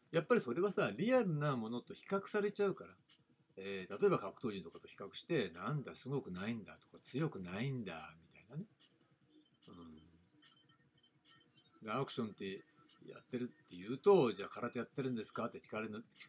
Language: Japanese